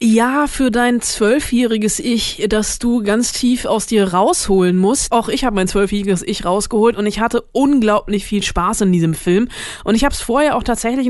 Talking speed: 195 wpm